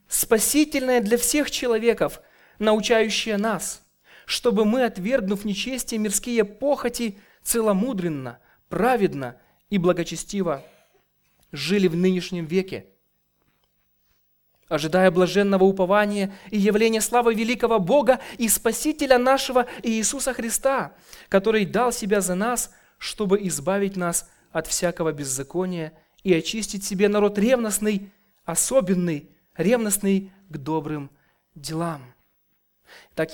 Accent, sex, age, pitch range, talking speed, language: native, male, 20-39, 185-245 Hz, 100 wpm, Russian